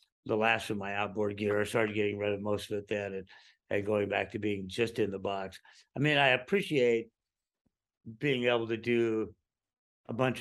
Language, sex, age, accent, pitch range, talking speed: English, male, 60-79, American, 115-140 Hz, 200 wpm